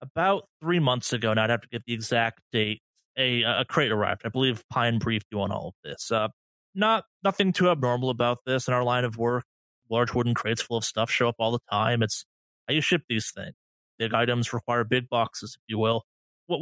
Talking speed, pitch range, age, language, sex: 230 wpm, 110-140 Hz, 30-49, English, male